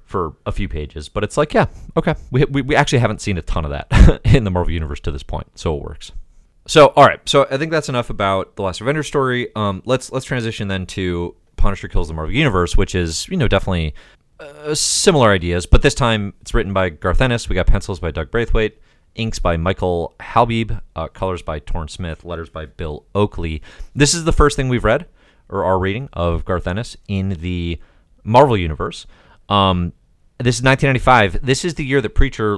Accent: American